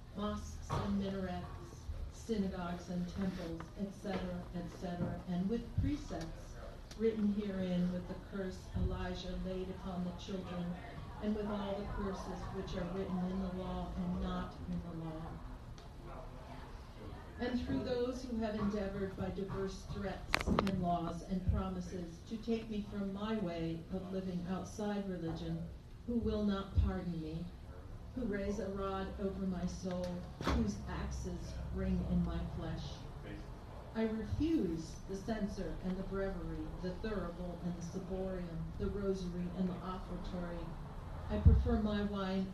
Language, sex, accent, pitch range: English, female, American, 170-200 Hz